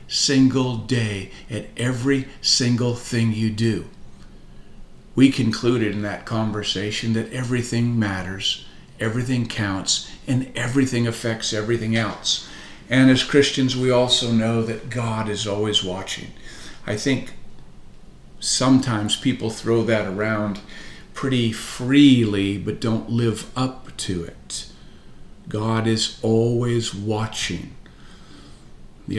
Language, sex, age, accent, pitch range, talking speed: English, male, 50-69, American, 105-120 Hz, 110 wpm